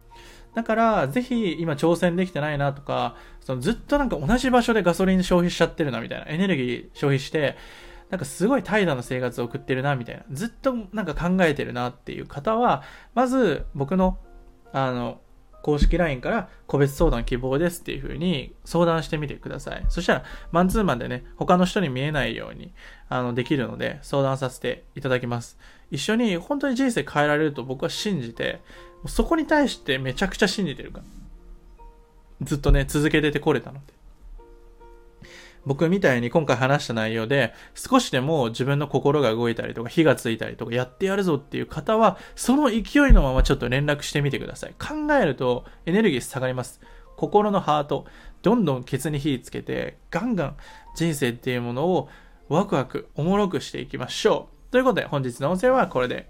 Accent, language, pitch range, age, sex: native, Japanese, 130-185 Hz, 20-39, male